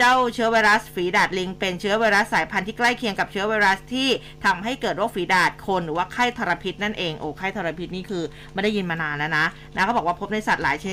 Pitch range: 185-235 Hz